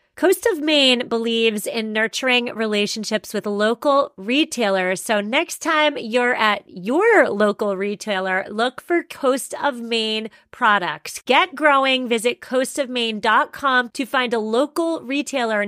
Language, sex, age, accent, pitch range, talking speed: English, female, 30-49, American, 220-275 Hz, 125 wpm